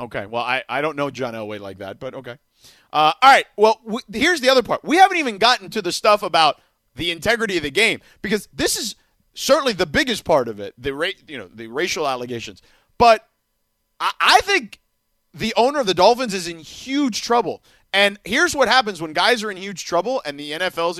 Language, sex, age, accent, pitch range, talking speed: English, male, 30-49, American, 135-210 Hz, 215 wpm